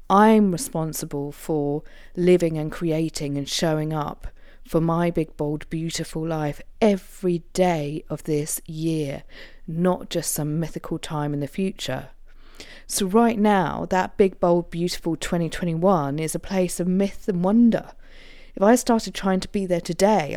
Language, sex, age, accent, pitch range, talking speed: English, female, 40-59, British, 155-195 Hz, 150 wpm